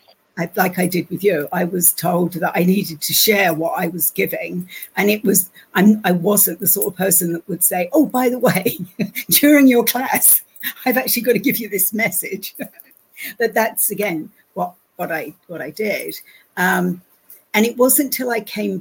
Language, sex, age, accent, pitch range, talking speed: English, female, 60-79, British, 175-210 Hz, 200 wpm